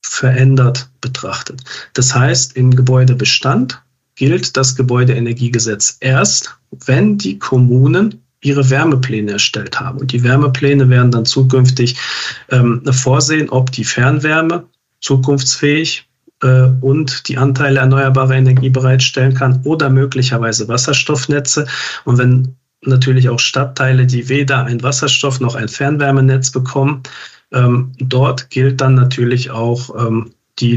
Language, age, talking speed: German, 50-69, 120 wpm